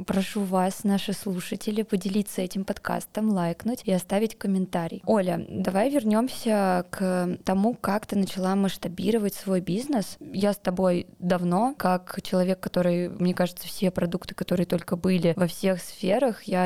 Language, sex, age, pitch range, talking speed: Russian, female, 20-39, 180-205 Hz, 145 wpm